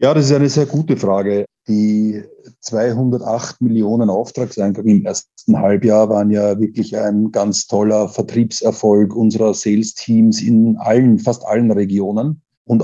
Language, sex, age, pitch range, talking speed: German, male, 50-69, 105-115 Hz, 140 wpm